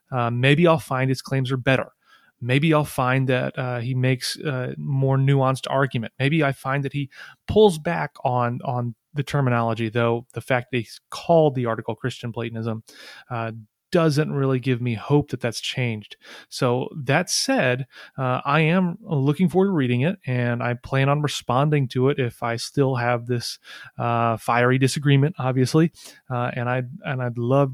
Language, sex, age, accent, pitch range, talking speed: English, male, 30-49, American, 120-135 Hz, 180 wpm